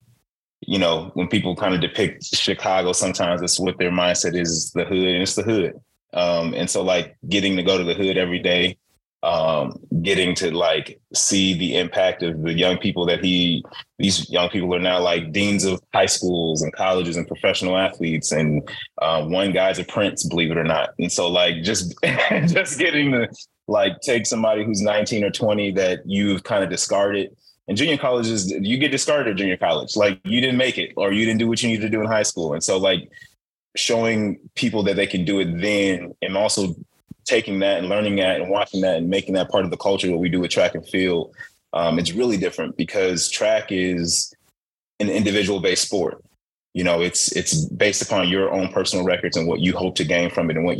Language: English